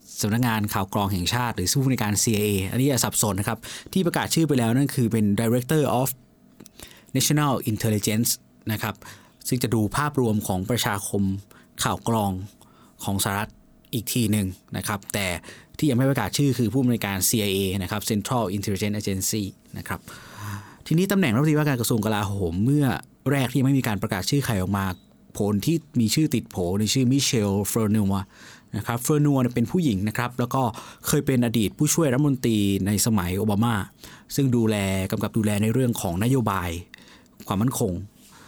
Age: 20-39